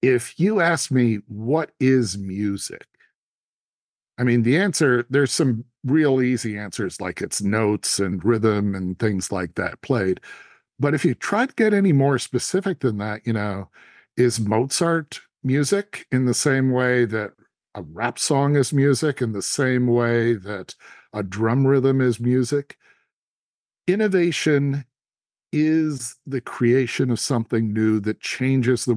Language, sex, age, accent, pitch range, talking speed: English, male, 50-69, American, 110-140 Hz, 150 wpm